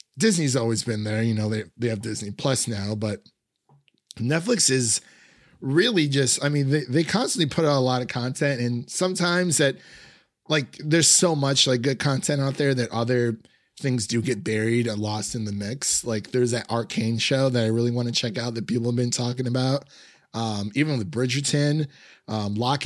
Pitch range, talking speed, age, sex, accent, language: 115-140 Hz, 195 wpm, 30-49, male, American, English